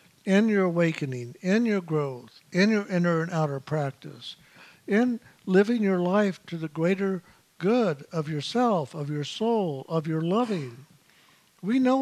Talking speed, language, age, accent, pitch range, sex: 150 wpm, English, 60-79, American, 155-205 Hz, male